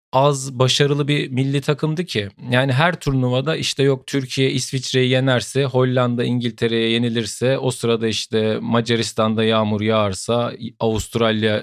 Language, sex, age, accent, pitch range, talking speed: Turkish, male, 40-59, native, 105-130 Hz, 125 wpm